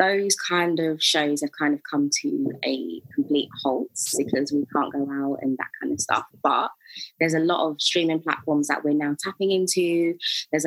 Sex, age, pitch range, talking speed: female, 20-39, 140-170 Hz, 195 wpm